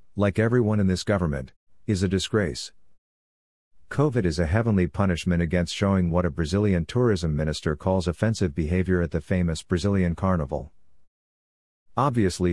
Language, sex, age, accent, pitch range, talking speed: English, male, 50-69, American, 85-105 Hz, 140 wpm